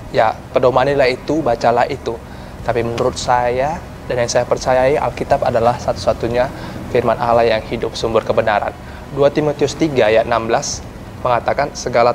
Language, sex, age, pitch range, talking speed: Malay, male, 20-39, 120-145 Hz, 140 wpm